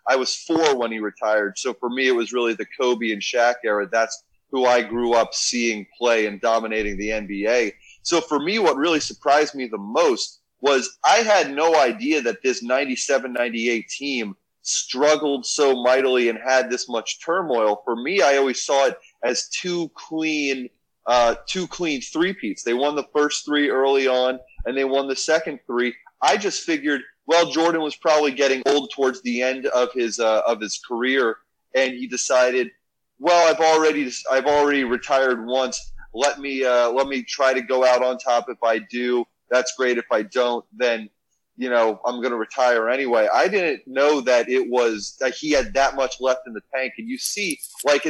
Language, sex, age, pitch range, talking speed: English, male, 30-49, 120-150 Hz, 195 wpm